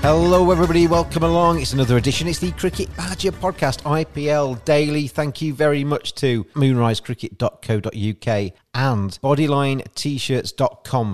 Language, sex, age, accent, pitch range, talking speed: English, male, 40-59, British, 120-150 Hz, 120 wpm